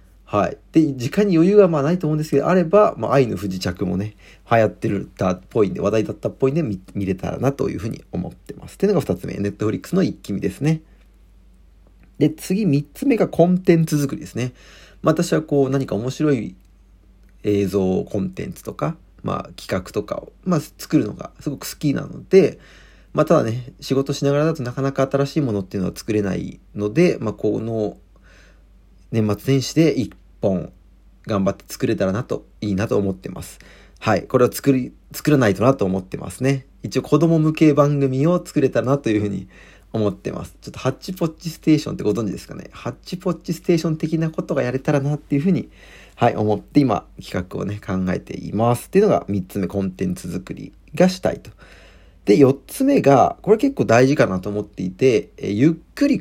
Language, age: Japanese, 40-59